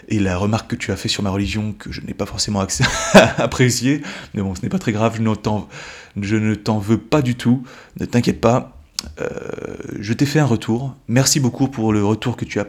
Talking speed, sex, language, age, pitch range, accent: 235 wpm, male, French, 20-39, 105-135 Hz, French